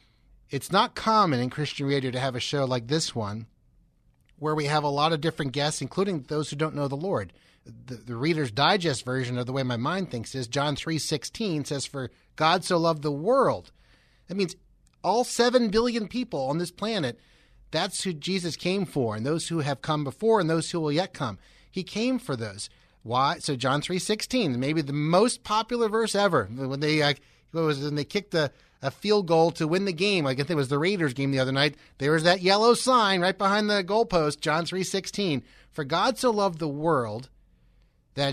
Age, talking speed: 30-49, 210 wpm